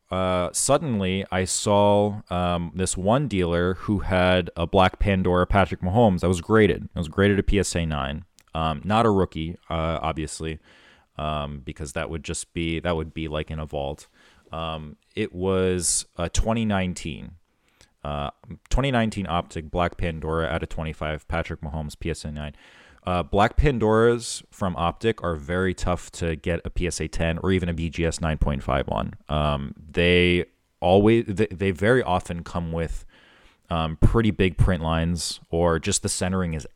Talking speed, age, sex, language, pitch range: 160 wpm, 30-49, male, English, 80-100 Hz